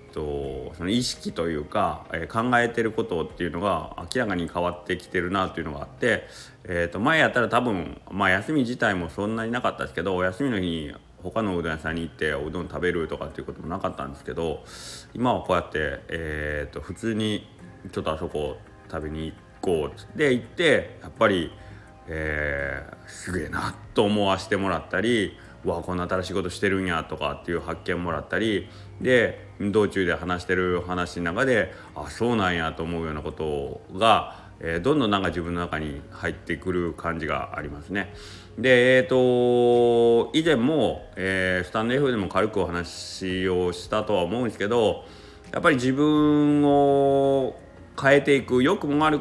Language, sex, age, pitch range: Japanese, male, 30-49, 85-115 Hz